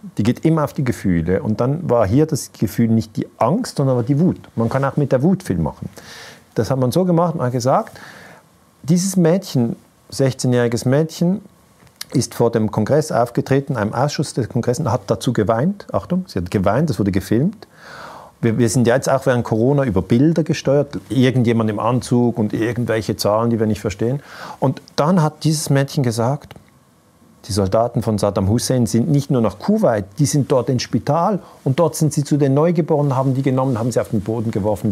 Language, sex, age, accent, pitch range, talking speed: German, male, 40-59, German, 110-145 Hz, 200 wpm